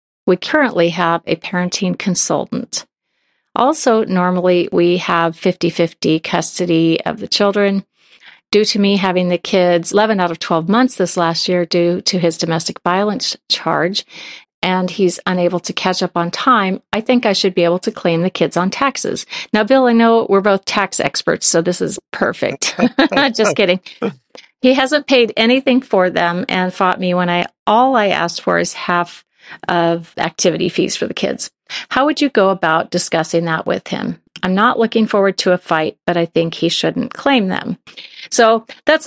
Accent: American